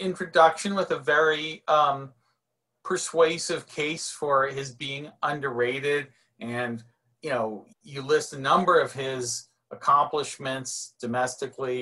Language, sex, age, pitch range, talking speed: English, male, 40-59, 120-175 Hz, 110 wpm